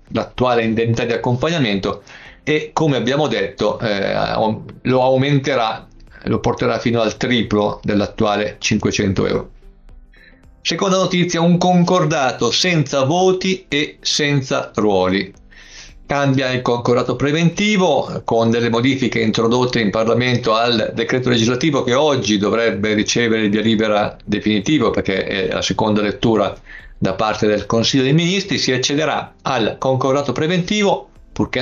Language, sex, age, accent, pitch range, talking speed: Italian, male, 50-69, native, 110-140 Hz, 125 wpm